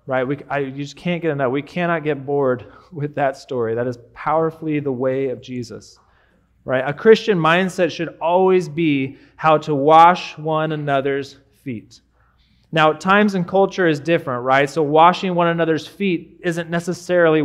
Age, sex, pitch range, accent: 30-49, male, 140-170 Hz, American